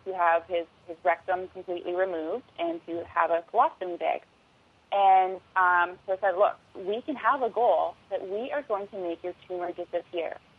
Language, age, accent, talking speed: English, 30-49, American, 185 wpm